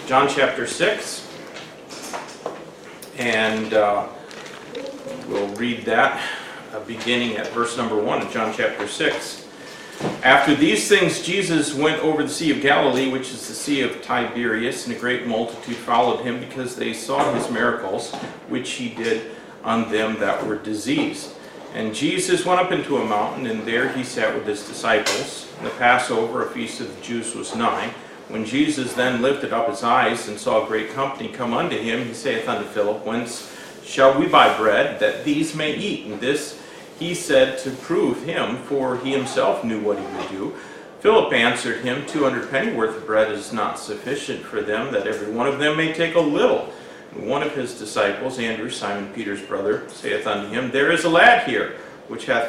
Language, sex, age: English, male, 40-59